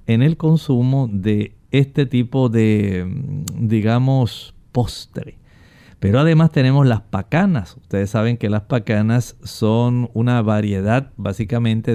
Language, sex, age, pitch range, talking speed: Spanish, male, 50-69, 110-145 Hz, 115 wpm